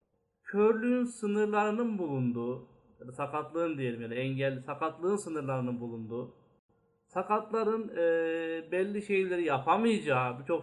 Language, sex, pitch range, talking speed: Turkish, male, 140-185 Hz, 105 wpm